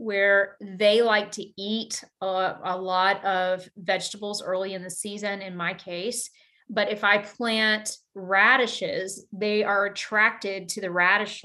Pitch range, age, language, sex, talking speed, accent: 195-225 Hz, 30-49, English, female, 145 wpm, American